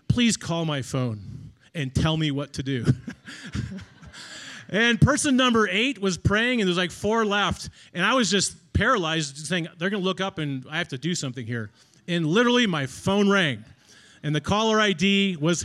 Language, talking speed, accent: English, 195 wpm, American